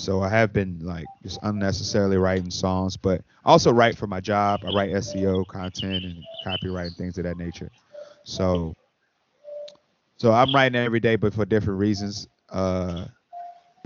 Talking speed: 165 wpm